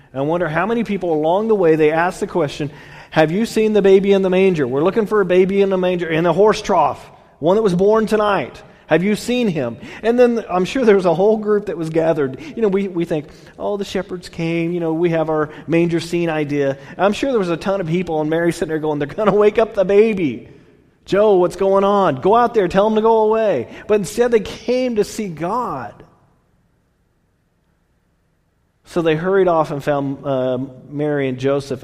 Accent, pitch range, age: American, 125-195 Hz, 30-49